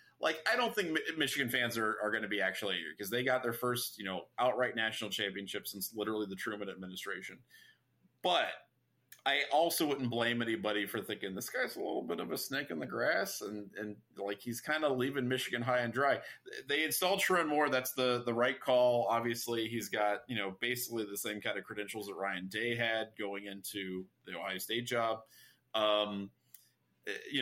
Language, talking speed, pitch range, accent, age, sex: English, 195 wpm, 105-125 Hz, American, 30-49, male